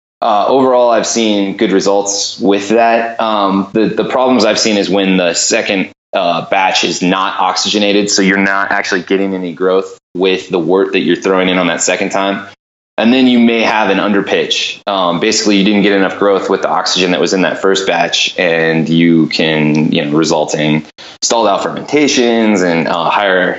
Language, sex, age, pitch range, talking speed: English, male, 20-39, 90-110 Hz, 195 wpm